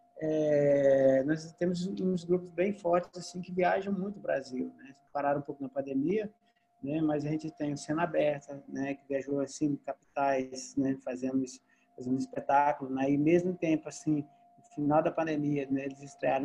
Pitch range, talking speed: 140-165 Hz, 170 wpm